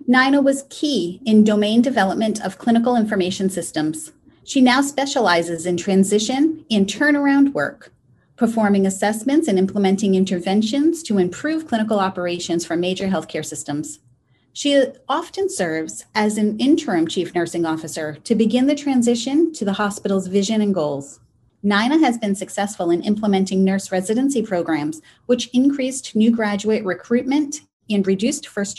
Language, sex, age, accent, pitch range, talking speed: English, female, 30-49, American, 185-240 Hz, 140 wpm